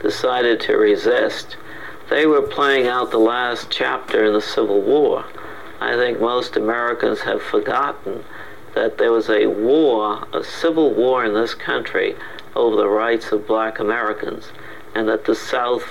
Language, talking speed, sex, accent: English, 155 wpm, male, American